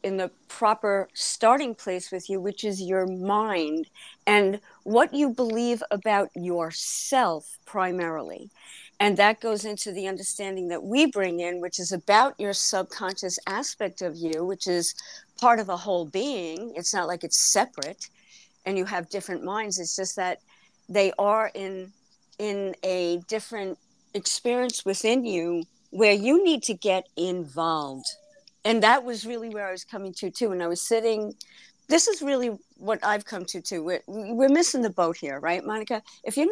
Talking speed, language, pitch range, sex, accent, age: 170 wpm, English, 180-225 Hz, female, American, 50-69